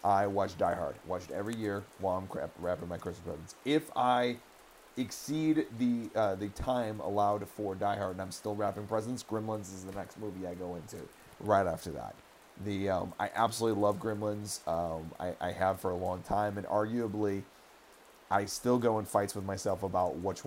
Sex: male